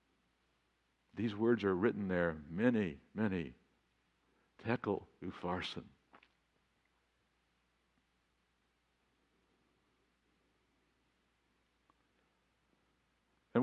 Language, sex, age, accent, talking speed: English, male, 60-79, American, 45 wpm